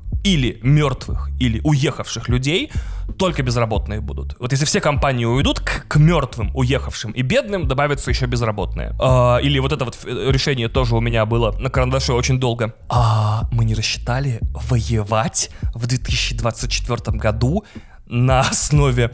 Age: 20-39